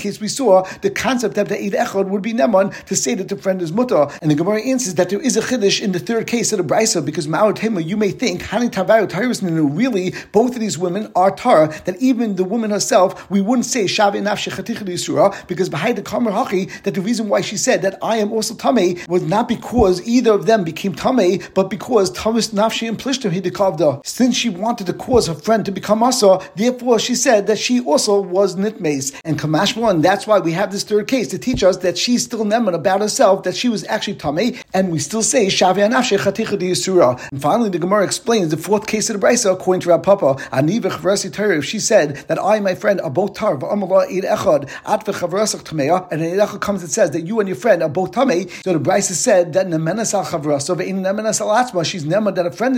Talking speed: 200 wpm